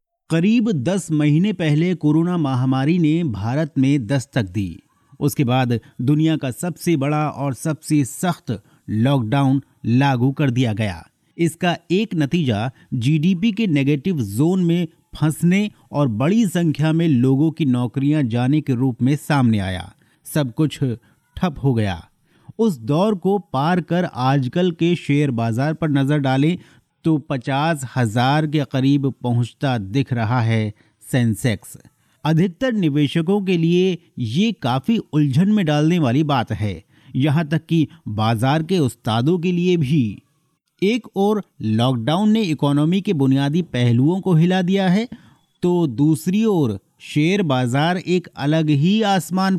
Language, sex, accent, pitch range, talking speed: Hindi, male, native, 130-175 Hz, 140 wpm